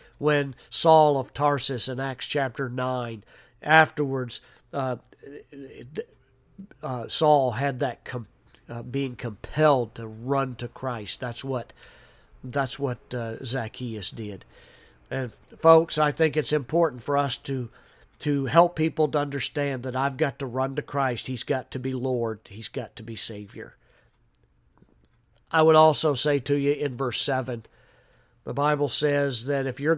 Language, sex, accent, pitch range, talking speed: English, male, American, 125-150 Hz, 150 wpm